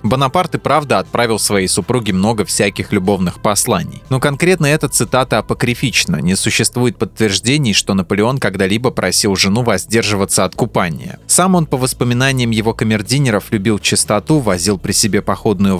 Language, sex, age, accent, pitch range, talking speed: Russian, male, 20-39, native, 105-140 Hz, 145 wpm